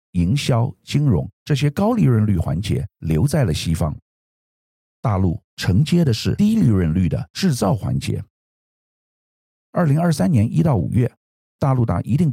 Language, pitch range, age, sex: Chinese, 90-135 Hz, 50-69, male